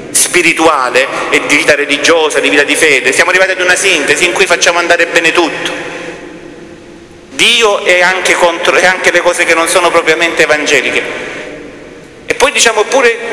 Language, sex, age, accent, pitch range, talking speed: Italian, male, 40-59, native, 130-195 Hz, 165 wpm